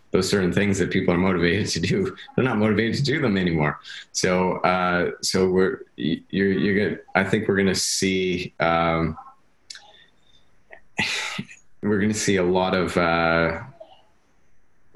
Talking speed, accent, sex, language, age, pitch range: 150 wpm, American, male, English, 30-49, 80-95 Hz